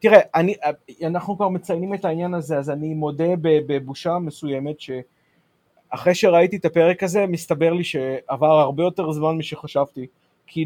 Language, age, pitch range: Hebrew, 30-49, 140-170 Hz